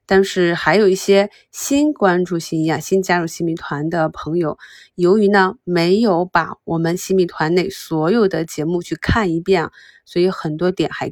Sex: female